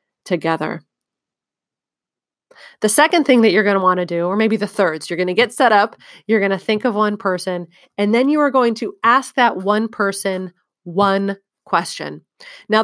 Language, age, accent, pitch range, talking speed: English, 30-49, American, 190-240 Hz, 195 wpm